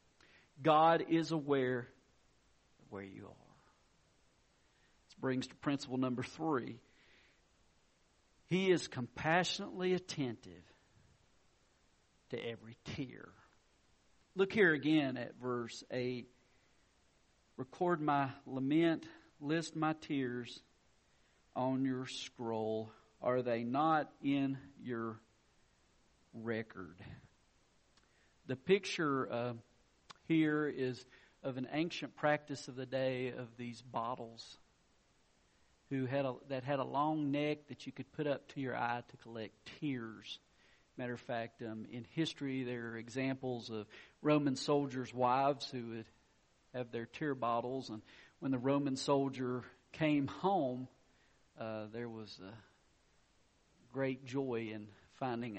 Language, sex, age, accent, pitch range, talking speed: English, male, 50-69, American, 115-140 Hz, 120 wpm